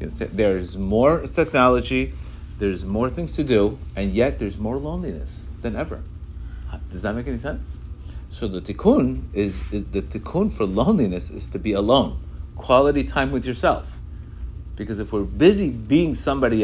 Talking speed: 150 wpm